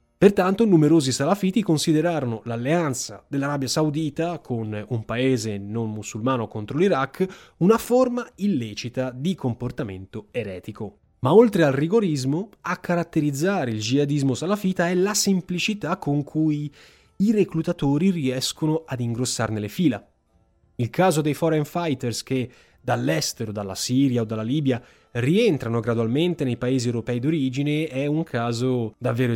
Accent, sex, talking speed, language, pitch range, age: native, male, 130 wpm, Italian, 120-175 Hz, 20-39